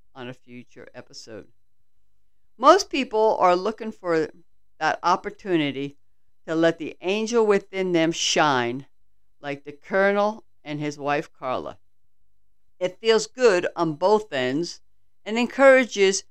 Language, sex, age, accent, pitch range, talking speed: English, female, 60-79, American, 125-195 Hz, 120 wpm